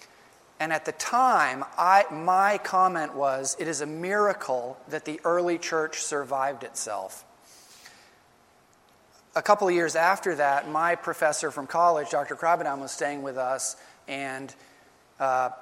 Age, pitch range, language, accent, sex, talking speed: 40-59, 135-160 Hz, English, American, male, 140 wpm